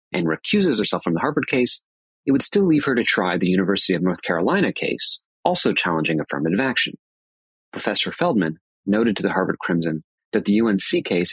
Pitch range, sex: 85-125 Hz, male